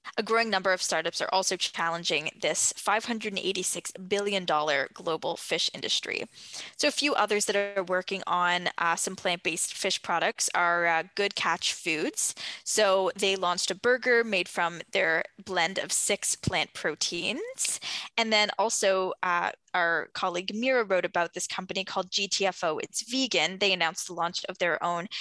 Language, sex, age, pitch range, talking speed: English, female, 10-29, 175-210 Hz, 160 wpm